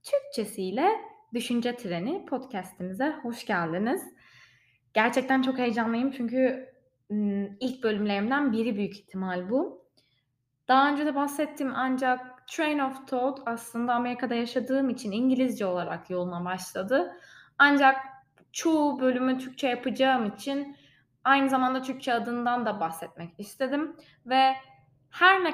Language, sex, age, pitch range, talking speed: Turkish, female, 20-39, 210-265 Hz, 115 wpm